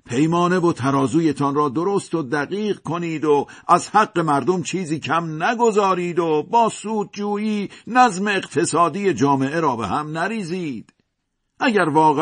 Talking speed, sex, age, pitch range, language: 135 wpm, male, 50-69, 150-205 Hz, Persian